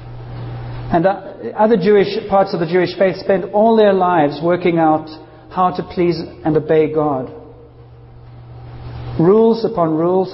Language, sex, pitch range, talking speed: English, male, 145-195 Hz, 135 wpm